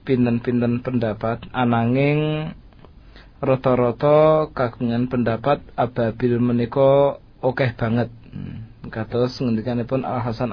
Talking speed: 75 wpm